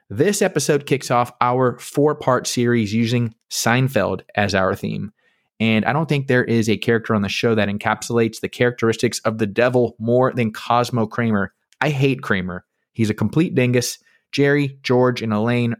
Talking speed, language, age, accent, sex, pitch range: 170 wpm, English, 20-39, American, male, 110-130 Hz